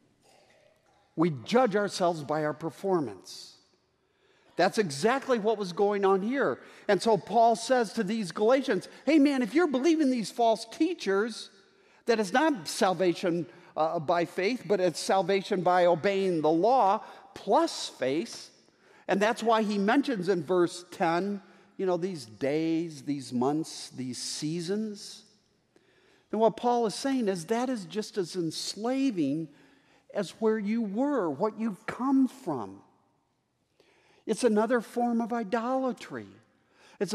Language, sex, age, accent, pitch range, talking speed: English, male, 50-69, American, 180-235 Hz, 135 wpm